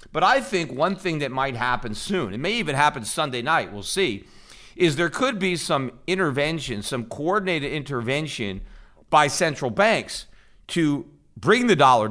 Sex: male